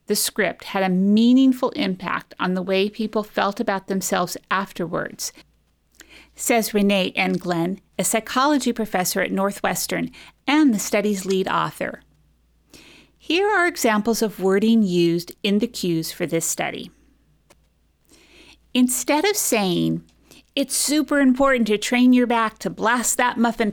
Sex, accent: female, American